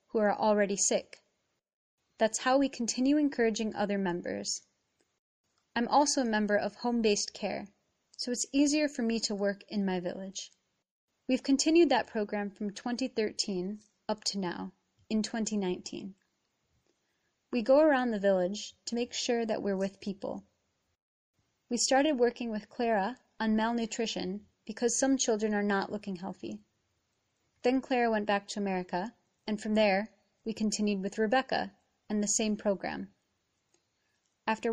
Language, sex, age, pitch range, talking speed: English, female, 20-39, 200-245 Hz, 145 wpm